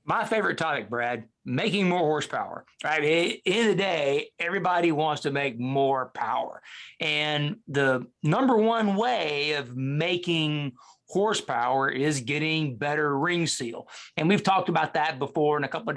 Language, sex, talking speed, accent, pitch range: English, male, 160 wpm, American, 140-190 Hz